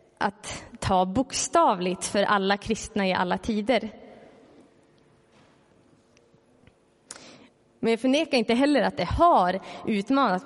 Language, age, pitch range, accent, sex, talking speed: Swedish, 20-39, 180-225 Hz, native, female, 105 wpm